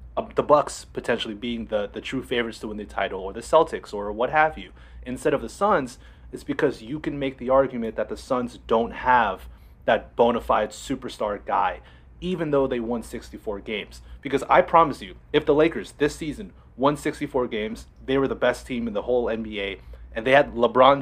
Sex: male